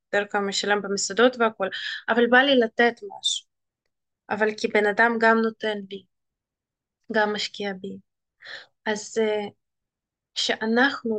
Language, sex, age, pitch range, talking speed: Hebrew, female, 20-39, 215-245 Hz, 115 wpm